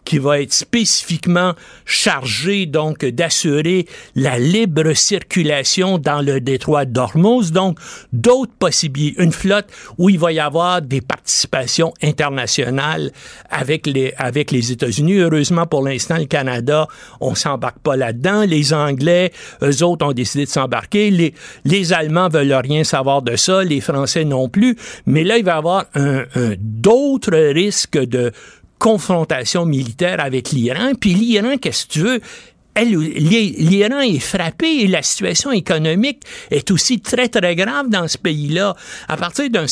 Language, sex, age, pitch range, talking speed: French, male, 60-79, 145-195 Hz, 150 wpm